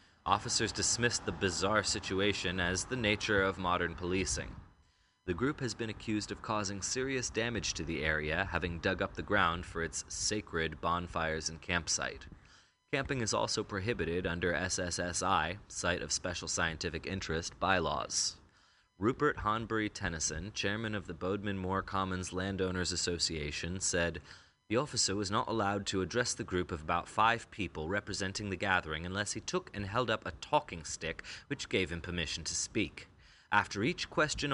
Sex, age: male, 20-39